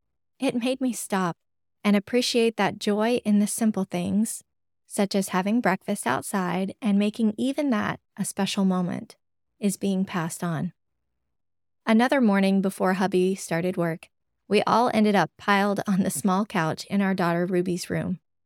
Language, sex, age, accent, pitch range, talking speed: English, female, 20-39, American, 185-220 Hz, 155 wpm